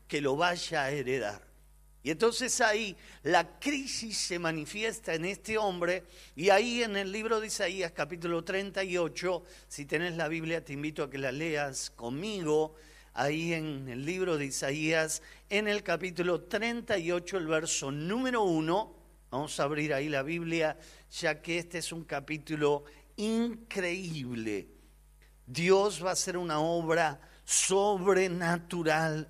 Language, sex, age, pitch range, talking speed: Spanish, male, 40-59, 150-200 Hz, 140 wpm